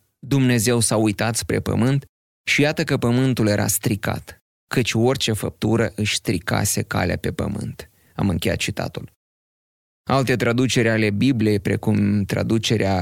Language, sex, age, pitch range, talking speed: Romanian, male, 20-39, 105-130 Hz, 130 wpm